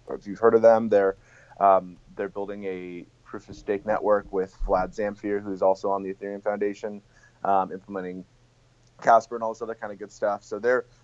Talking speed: 185 wpm